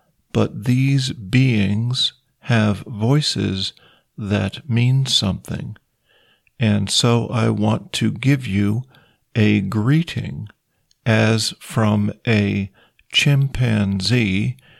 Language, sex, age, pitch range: Thai, male, 50-69, 105-125 Hz